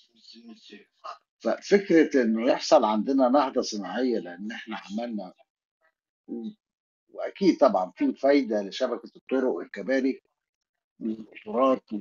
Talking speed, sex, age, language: 90 wpm, male, 50-69, Arabic